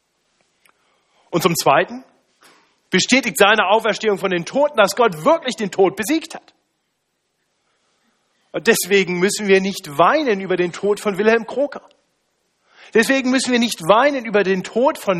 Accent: German